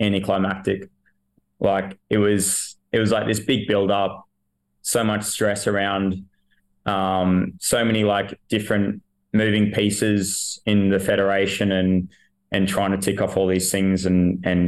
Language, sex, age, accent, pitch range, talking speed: English, male, 20-39, Australian, 95-100 Hz, 145 wpm